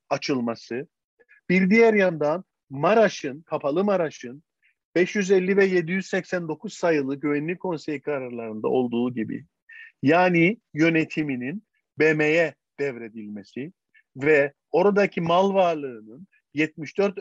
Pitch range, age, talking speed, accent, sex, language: 140-200 Hz, 50-69, 85 wpm, native, male, Turkish